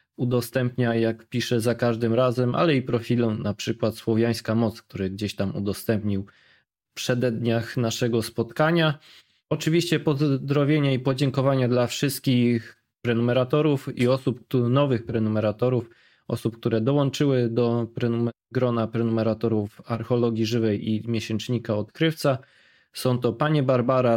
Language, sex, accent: Polish, male, native